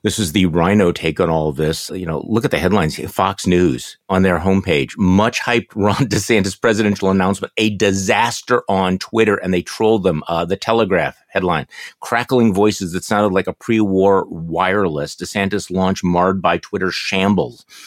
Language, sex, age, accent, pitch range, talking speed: English, male, 50-69, American, 95-115 Hz, 180 wpm